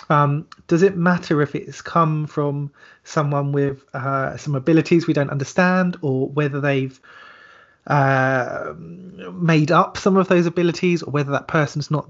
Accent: British